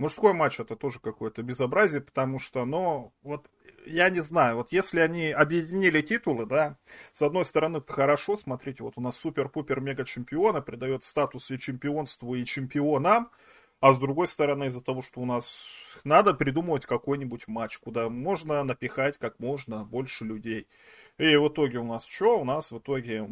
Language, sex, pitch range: Russian, male, 120-150 Hz